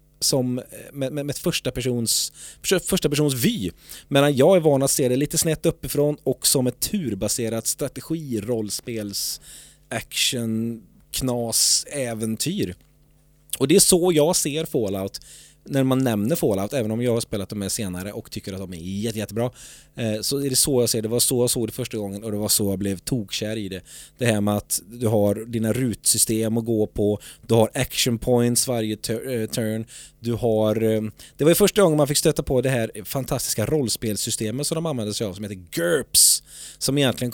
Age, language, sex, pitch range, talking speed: 20-39, English, male, 110-140 Hz, 185 wpm